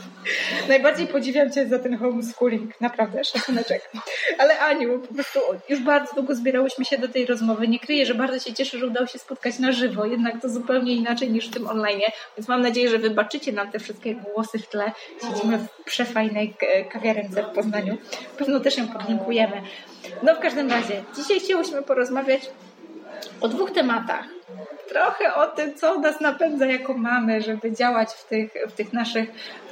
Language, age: Polish, 20-39